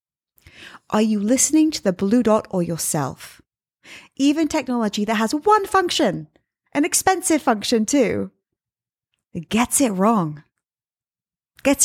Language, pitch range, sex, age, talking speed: English, 175-240 Hz, female, 30-49, 115 wpm